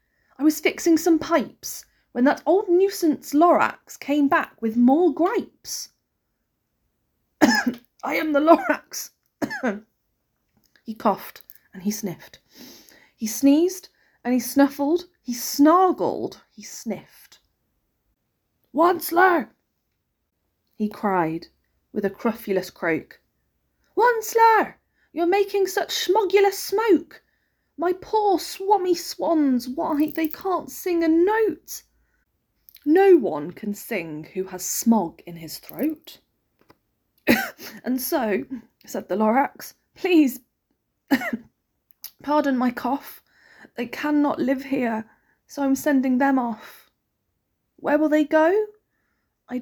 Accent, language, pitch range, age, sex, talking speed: British, English, 245-340 Hz, 30-49, female, 110 wpm